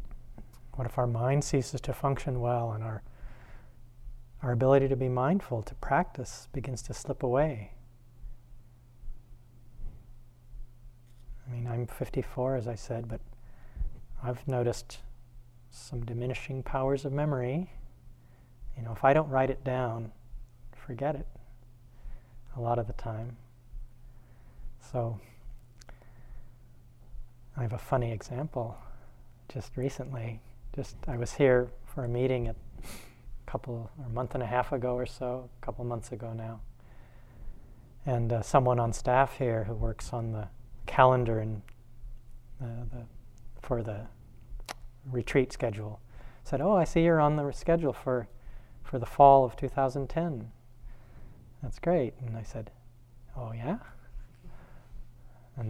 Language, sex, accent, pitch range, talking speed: English, male, American, 120-130 Hz, 130 wpm